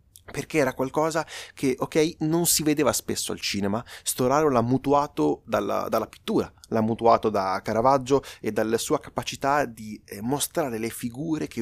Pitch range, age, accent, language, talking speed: 115-150 Hz, 30-49, native, Italian, 160 wpm